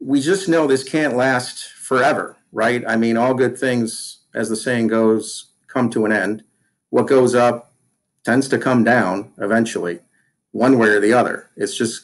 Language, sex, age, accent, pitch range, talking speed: English, male, 50-69, American, 105-125 Hz, 180 wpm